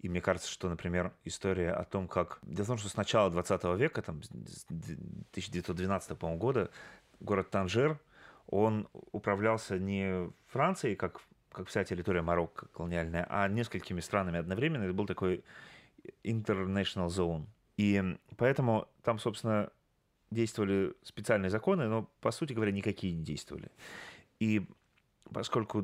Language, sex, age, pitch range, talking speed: Russian, male, 30-49, 90-115 Hz, 130 wpm